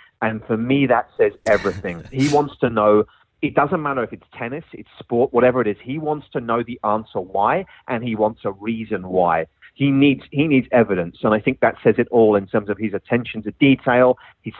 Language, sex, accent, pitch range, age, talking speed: English, male, British, 115-150 Hz, 30-49, 220 wpm